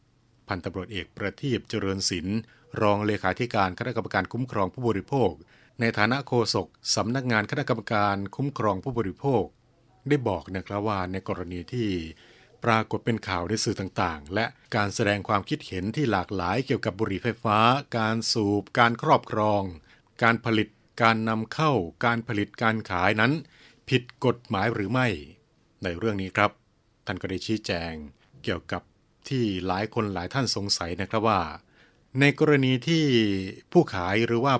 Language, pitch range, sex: Thai, 95-120 Hz, male